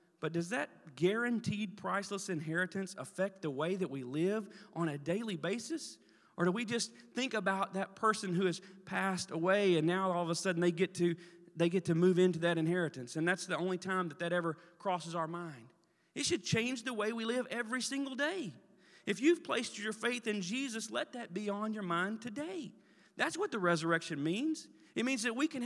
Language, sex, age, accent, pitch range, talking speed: English, male, 40-59, American, 160-215 Hz, 205 wpm